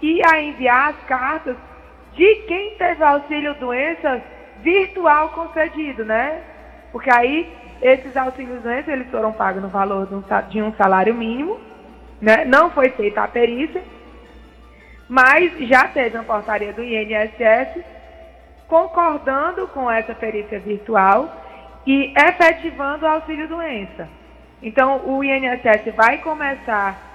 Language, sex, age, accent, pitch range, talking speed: Portuguese, female, 20-39, Brazilian, 225-310 Hz, 115 wpm